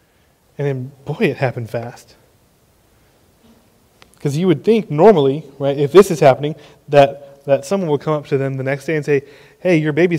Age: 20-39